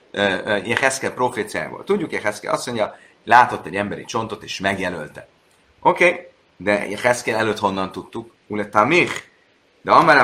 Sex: male